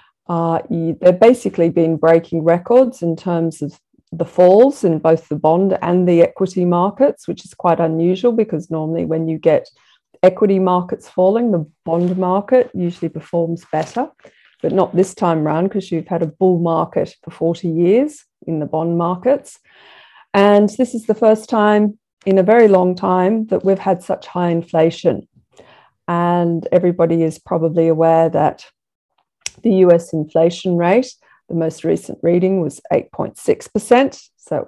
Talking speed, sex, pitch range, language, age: 155 wpm, female, 165-200 Hz, English, 40-59